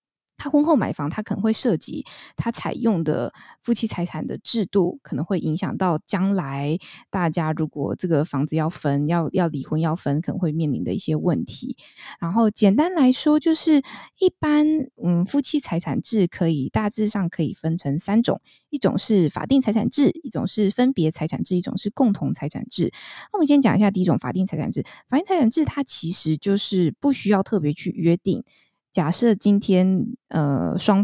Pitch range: 165-235 Hz